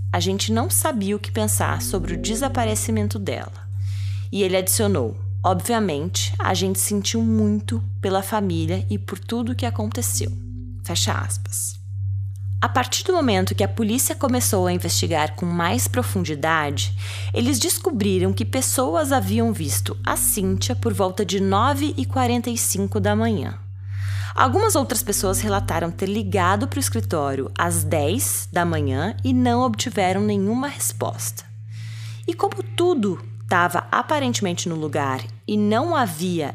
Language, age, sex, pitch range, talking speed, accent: Portuguese, 20-39, female, 100-145 Hz, 140 wpm, Brazilian